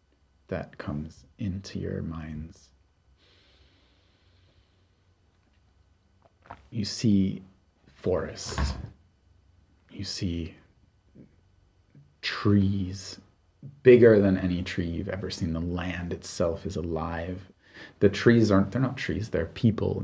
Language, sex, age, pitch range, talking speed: English, male, 30-49, 90-100 Hz, 95 wpm